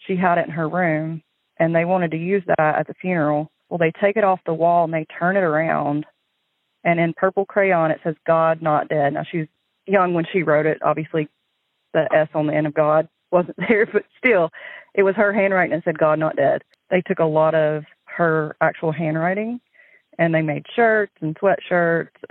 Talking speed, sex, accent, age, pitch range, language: 215 wpm, female, American, 30-49, 155-180 Hz, English